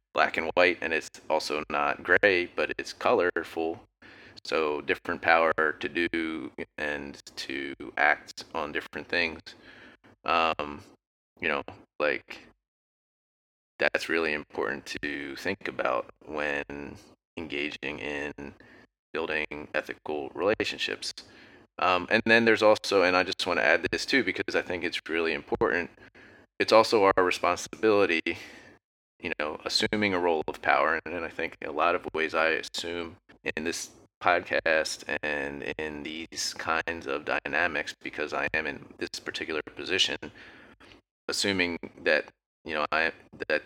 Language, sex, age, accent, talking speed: English, male, 30-49, American, 135 wpm